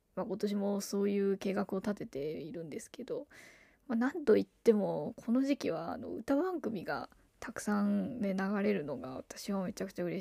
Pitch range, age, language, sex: 195-255 Hz, 20-39, Japanese, female